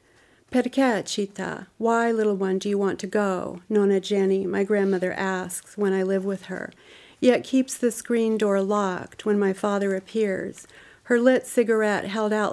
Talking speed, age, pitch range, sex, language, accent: 160 wpm, 50-69, 190-215 Hz, female, English, American